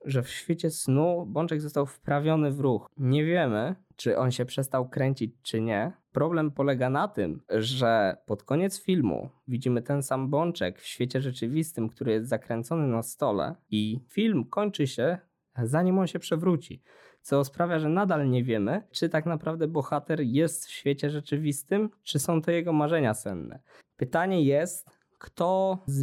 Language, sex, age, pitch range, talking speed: Polish, male, 20-39, 125-160 Hz, 160 wpm